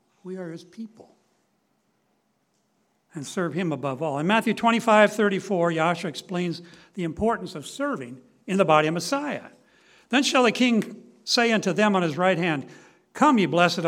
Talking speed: 165 wpm